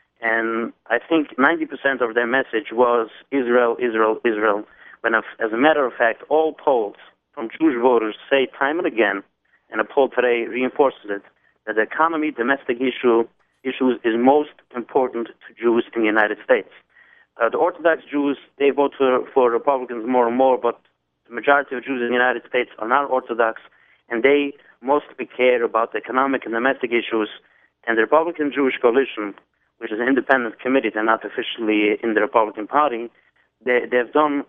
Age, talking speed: 30-49, 175 wpm